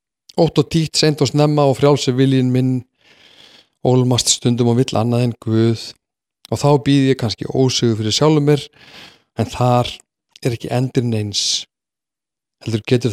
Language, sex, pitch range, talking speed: English, male, 110-130 Hz, 145 wpm